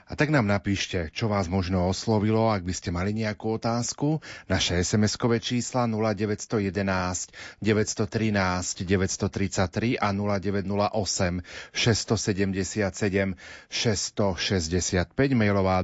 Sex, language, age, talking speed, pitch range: male, Slovak, 40-59, 70 wpm, 95-110 Hz